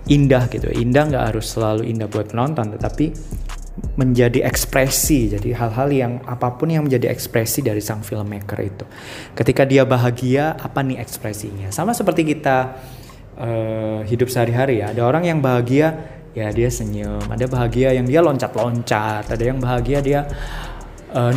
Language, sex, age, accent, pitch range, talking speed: Indonesian, male, 20-39, native, 110-130 Hz, 150 wpm